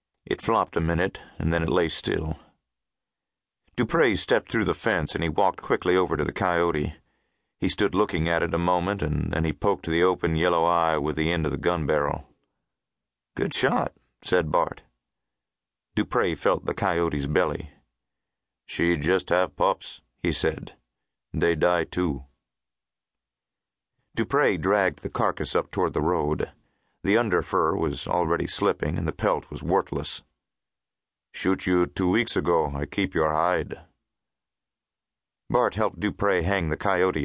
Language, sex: English, male